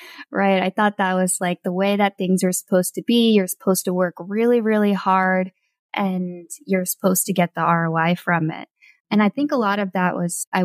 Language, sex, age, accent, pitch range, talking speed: English, female, 10-29, American, 175-215 Hz, 220 wpm